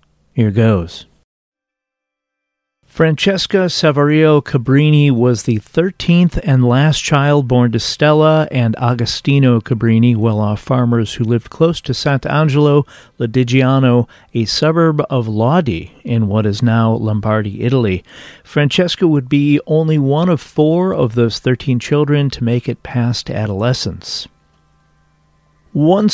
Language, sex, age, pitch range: English, male, 40-59, 115-150 Hz